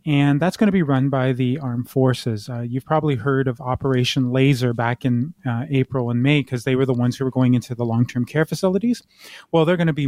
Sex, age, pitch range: male, 30-49, 125-150 Hz